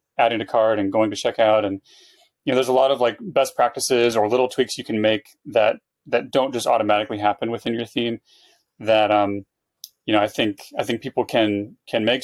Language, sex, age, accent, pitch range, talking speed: English, male, 30-49, American, 110-135 Hz, 215 wpm